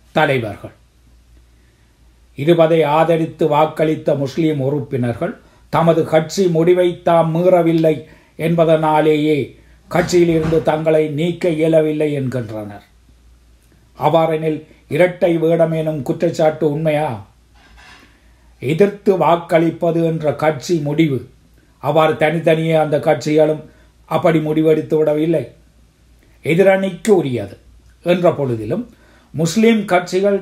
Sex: male